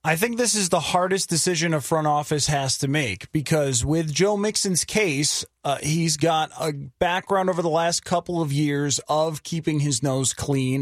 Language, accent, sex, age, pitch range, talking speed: English, American, male, 30-49, 150-200 Hz, 190 wpm